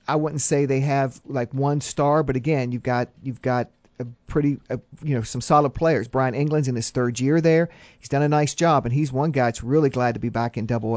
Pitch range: 115-135 Hz